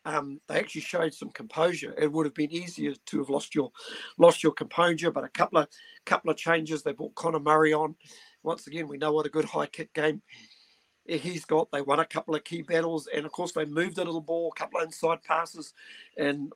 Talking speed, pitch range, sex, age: 225 wpm, 150-165 Hz, male, 50-69